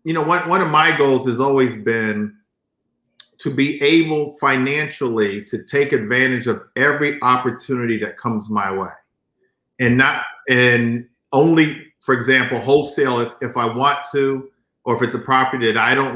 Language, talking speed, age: English, 160 wpm, 50-69